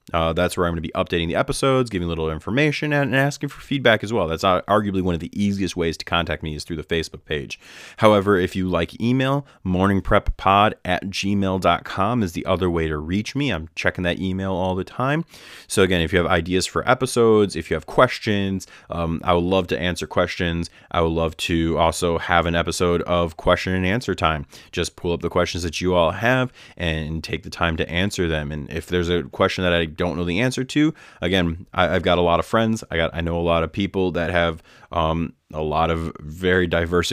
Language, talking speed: English, 230 wpm